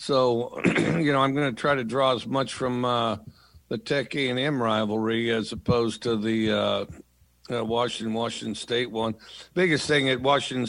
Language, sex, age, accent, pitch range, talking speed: English, male, 50-69, American, 105-120 Hz, 165 wpm